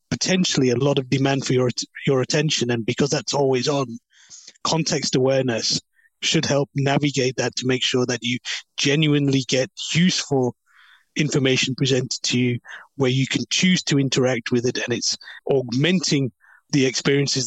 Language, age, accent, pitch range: English, 30-49, British, 125-140 Hz